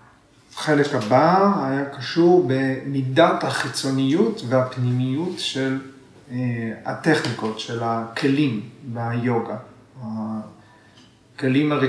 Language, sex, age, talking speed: Hebrew, male, 40-59, 70 wpm